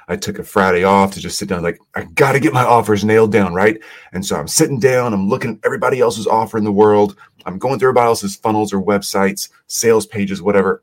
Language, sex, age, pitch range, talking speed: English, male, 30-49, 100-140 Hz, 240 wpm